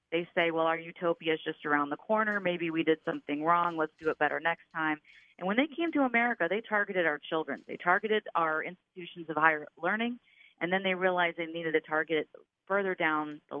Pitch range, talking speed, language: 160-195 Hz, 215 wpm, English